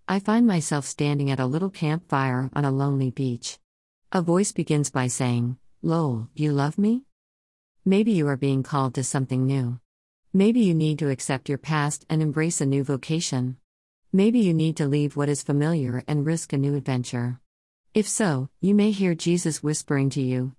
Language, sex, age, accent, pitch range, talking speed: English, female, 50-69, American, 130-160 Hz, 185 wpm